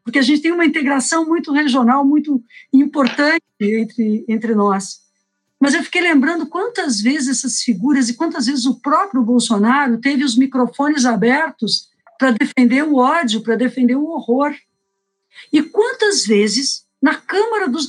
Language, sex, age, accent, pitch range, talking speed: Portuguese, female, 50-69, Brazilian, 225-280 Hz, 150 wpm